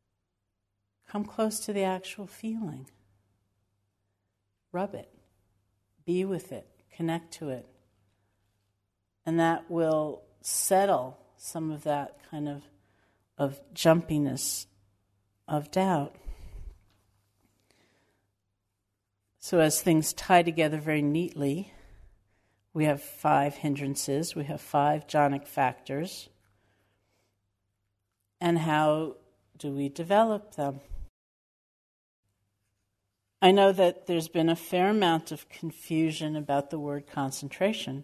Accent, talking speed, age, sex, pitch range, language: American, 100 wpm, 60-79, female, 100-160 Hz, English